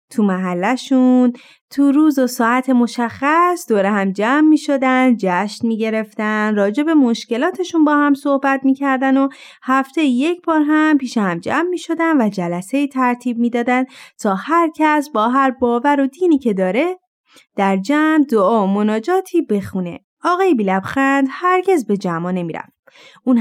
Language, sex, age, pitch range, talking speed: Persian, female, 30-49, 210-290 Hz, 145 wpm